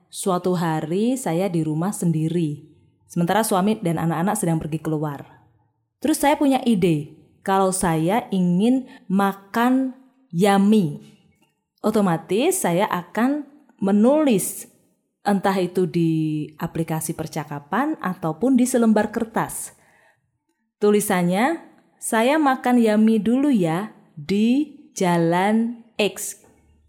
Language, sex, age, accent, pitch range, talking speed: Indonesian, female, 20-39, native, 175-250 Hz, 100 wpm